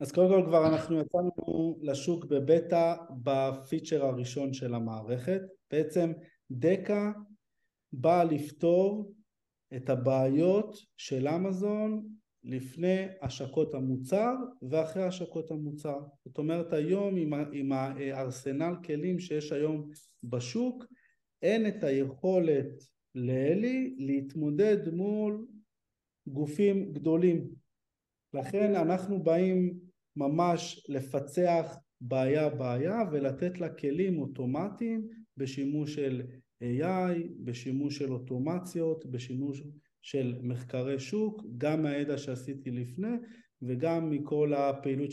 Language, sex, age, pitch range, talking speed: Hebrew, male, 50-69, 135-180 Hz, 95 wpm